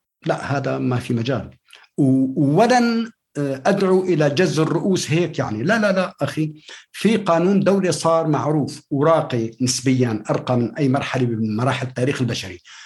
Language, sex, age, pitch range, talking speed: Arabic, male, 60-79, 135-170 Hz, 145 wpm